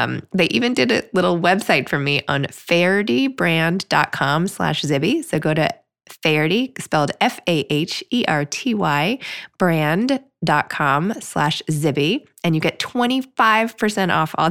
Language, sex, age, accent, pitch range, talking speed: English, female, 20-39, American, 150-190 Hz, 115 wpm